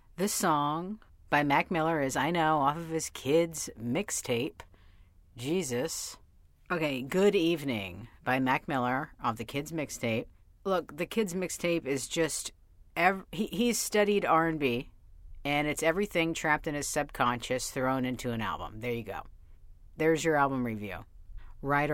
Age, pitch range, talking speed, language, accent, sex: 50-69, 110-160 Hz, 150 wpm, English, American, female